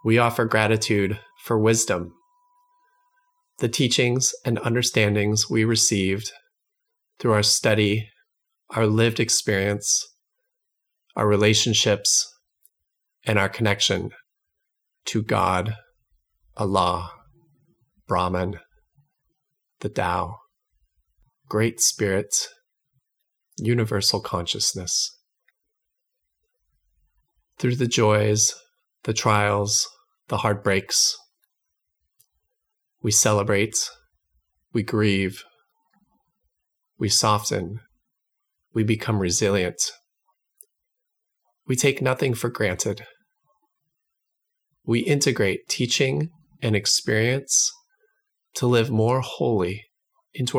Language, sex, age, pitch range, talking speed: English, male, 30-49, 105-175 Hz, 75 wpm